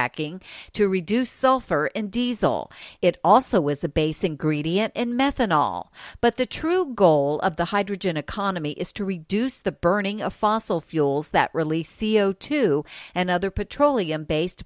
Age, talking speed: 50-69, 145 wpm